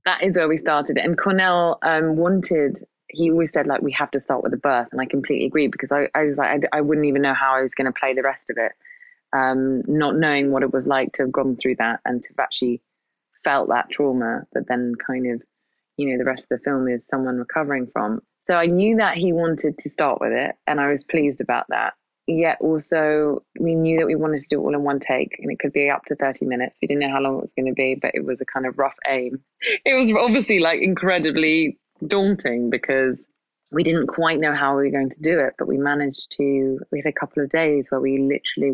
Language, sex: English, female